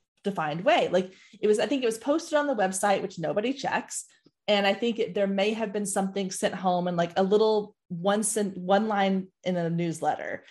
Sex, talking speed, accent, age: female, 215 wpm, American, 30-49